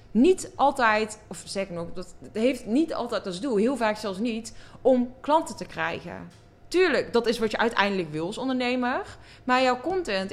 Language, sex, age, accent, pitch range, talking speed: Dutch, female, 20-39, Dutch, 190-245 Hz, 185 wpm